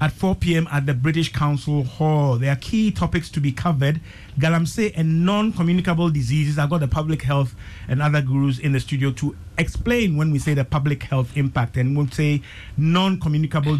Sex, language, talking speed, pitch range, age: male, English, 185 wpm, 135-165 Hz, 50-69